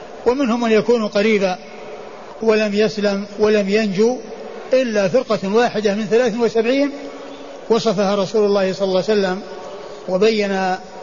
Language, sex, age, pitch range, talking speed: Arabic, male, 60-79, 190-225 Hz, 120 wpm